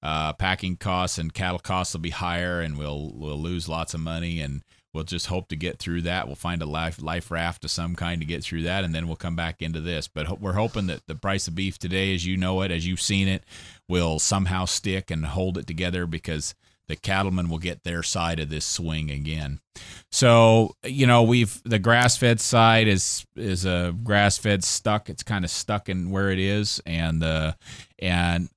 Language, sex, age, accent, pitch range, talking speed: English, male, 30-49, American, 90-110 Hz, 220 wpm